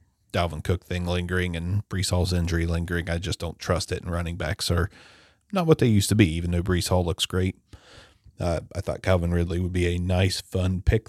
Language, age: English, 30-49